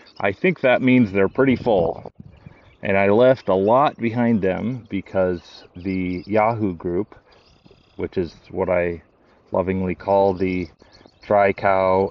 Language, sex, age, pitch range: English, male, 30-49, 90-110 Hz